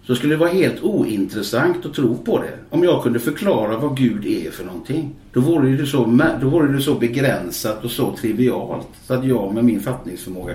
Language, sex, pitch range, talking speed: Swedish, male, 110-130 Hz, 210 wpm